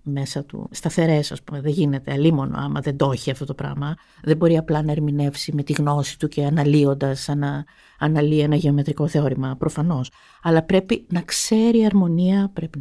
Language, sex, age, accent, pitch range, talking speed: Greek, female, 50-69, native, 150-205 Hz, 185 wpm